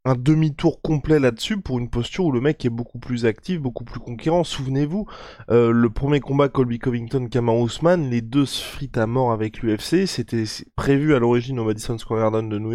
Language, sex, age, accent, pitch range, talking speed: French, male, 20-39, French, 115-150 Hz, 205 wpm